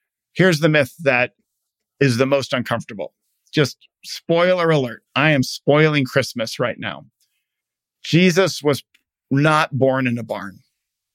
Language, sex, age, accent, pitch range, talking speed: English, male, 50-69, American, 135-160 Hz, 130 wpm